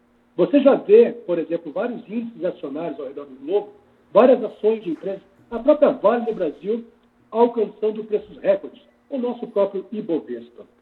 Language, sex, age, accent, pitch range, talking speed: Portuguese, male, 60-79, Brazilian, 180-245 Hz, 155 wpm